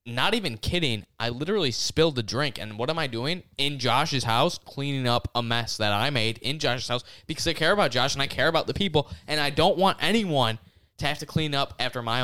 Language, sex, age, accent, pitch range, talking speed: English, male, 10-29, American, 115-145 Hz, 240 wpm